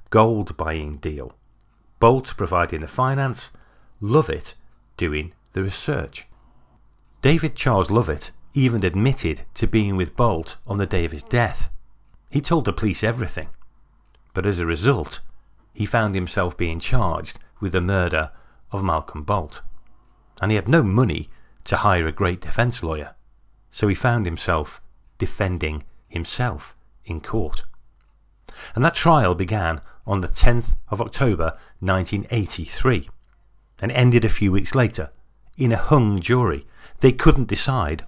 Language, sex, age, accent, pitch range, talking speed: English, male, 40-59, British, 85-120 Hz, 140 wpm